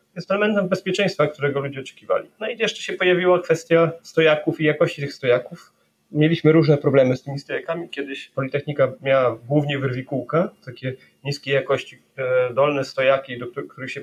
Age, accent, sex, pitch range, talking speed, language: 30-49, native, male, 135-170 Hz, 155 wpm, Polish